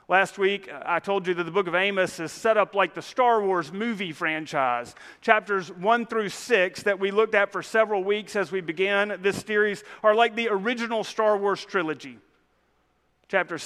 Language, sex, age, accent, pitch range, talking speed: English, male, 40-59, American, 185-230 Hz, 190 wpm